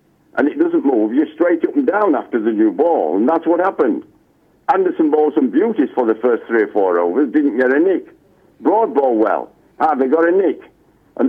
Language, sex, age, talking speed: English, male, 60-79, 220 wpm